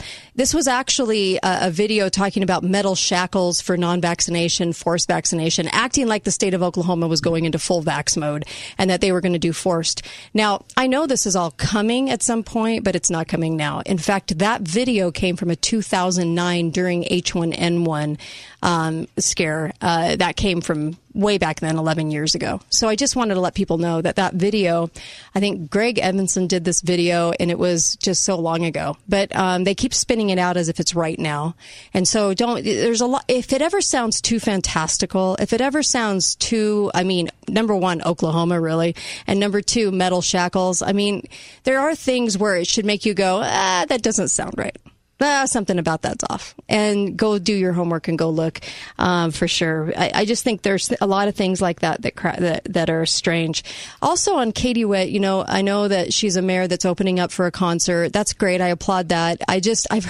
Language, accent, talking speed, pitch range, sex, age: English, American, 210 wpm, 170-210 Hz, female, 30-49